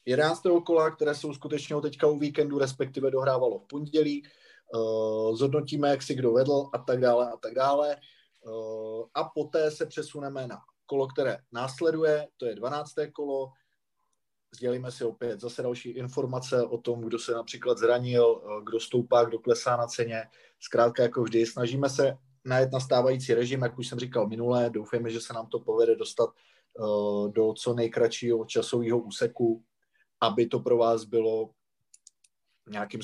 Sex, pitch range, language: male, 115-145 Hz, Czech